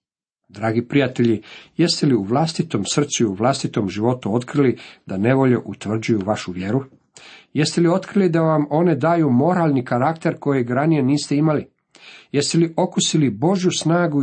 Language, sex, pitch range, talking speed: Croatian, male, 115-150 Hz, 150 wpm